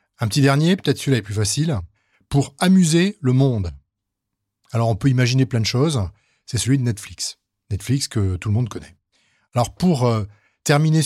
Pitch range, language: 110-145 Hz, French